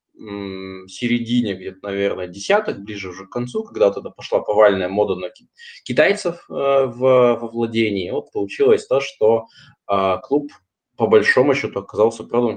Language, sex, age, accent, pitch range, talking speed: Russian, male, 20-39, native, 100-140 Hz, 150 wpm